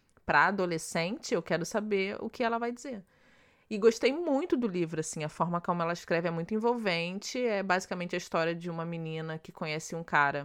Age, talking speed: 20-39, 200 wpm